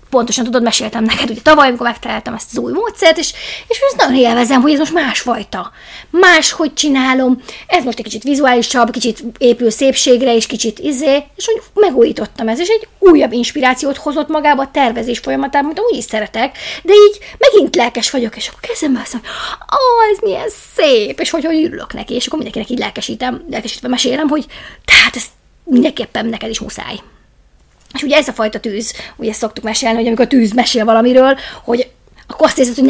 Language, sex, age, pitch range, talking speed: Hungarian, female, 20-39, 230-290 Hz, 190 wpm